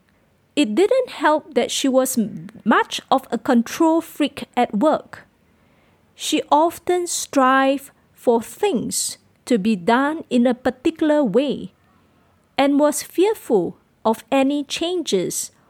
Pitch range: 240-315 Hz